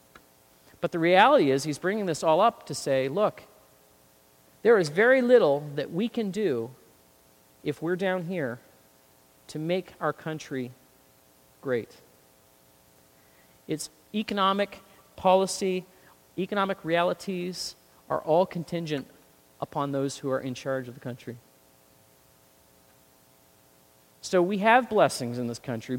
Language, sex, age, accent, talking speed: English, male, 40-59, American, 120 wpm